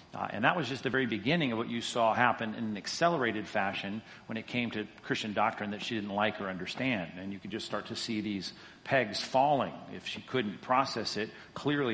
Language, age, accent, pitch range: English, 40-59, American, 95-120 Hz